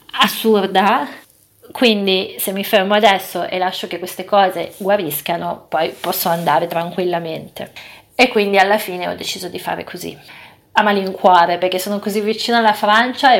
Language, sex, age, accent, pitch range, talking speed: Italian, female, 30-49, native, 180-210 Hz, 150 wpm